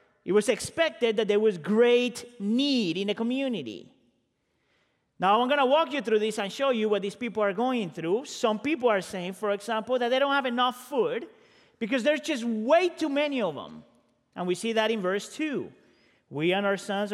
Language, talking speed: English, 205 wpm